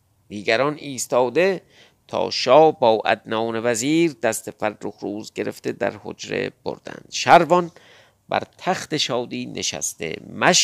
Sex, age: male, 50-69